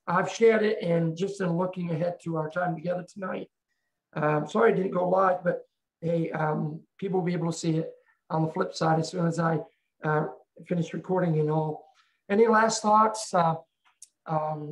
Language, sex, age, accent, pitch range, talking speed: English, male, 50-69, American, 170-205 Hz, 190 wpm